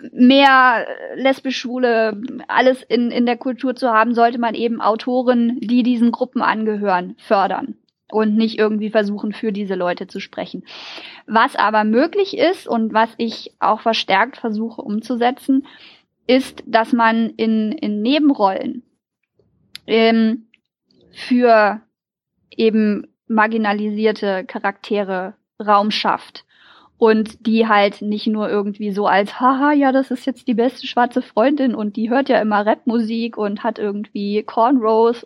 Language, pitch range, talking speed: German, 210-250 Hz, 135 wpm